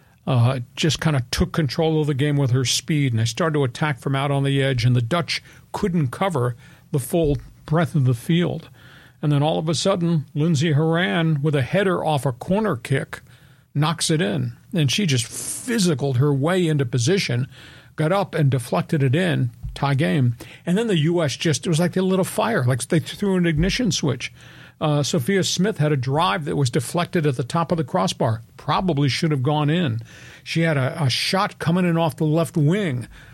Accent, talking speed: American, 210 wpm